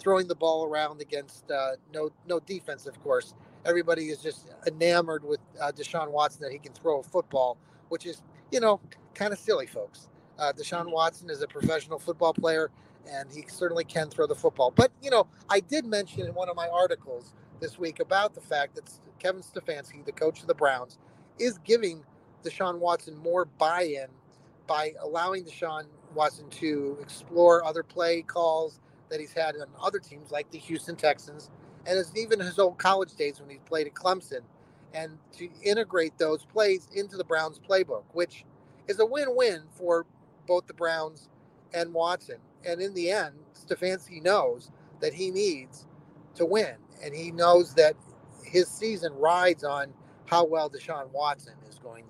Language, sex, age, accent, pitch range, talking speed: English, male, 30-49, American, 150-185 Hz, 175 wpm